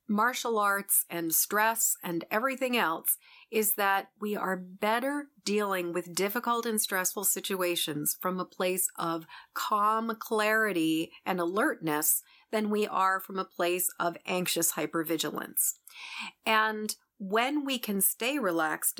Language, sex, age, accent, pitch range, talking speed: English, female, 40-59, American, 170-220 Hz, 130 wpm